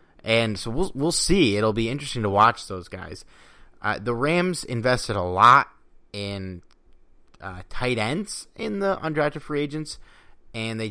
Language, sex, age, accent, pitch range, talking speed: English, male, 30-49, American, 95-115 Hz, 160 wpm